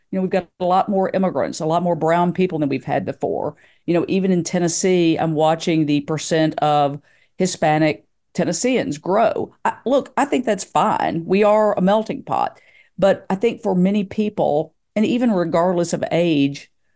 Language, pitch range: English, 155-195 Hz